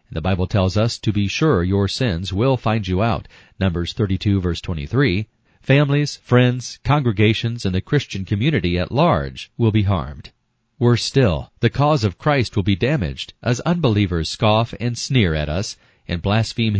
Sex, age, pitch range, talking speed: male, 40-59, 95-125 Hz, 170 wpm